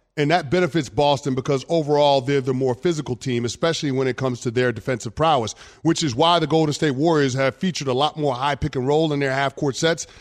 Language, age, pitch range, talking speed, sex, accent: English, 30-49, 135-170 Hz, 230 wpm, male, American